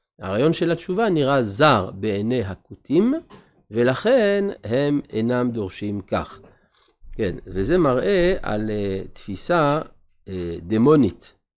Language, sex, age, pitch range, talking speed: Hebrew, male, 50-69, 100-150 Hz, 95 wpm